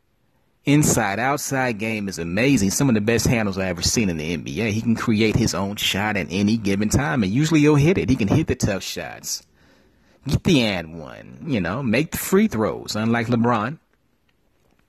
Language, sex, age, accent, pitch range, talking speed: English, male, 30-49, American, 105-140 Hz, 200 wpm